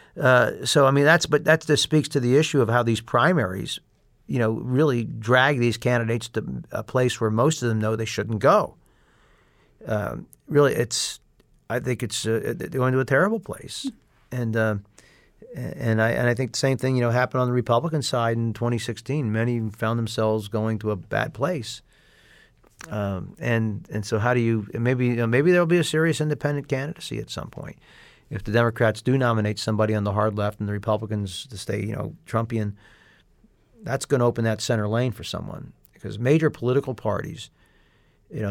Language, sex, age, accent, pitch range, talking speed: English, male, 50-69, American, 110-135 Hz, 185 wpm